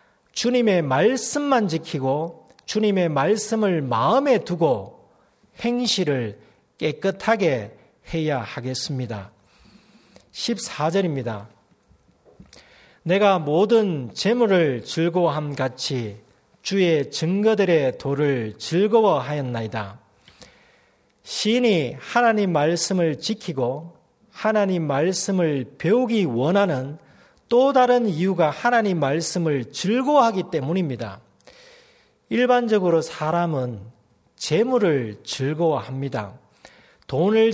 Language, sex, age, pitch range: Korean, male, 40-59, 135-215 Hz